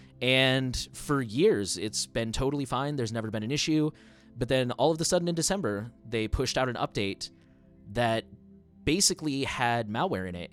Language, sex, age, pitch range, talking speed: English, male, 20-39, 100-125 Hz, 175 wpm